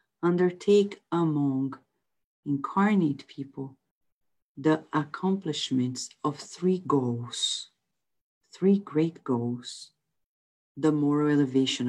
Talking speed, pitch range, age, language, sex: 75 wpm, 130-165 Hz, 50-69, English, female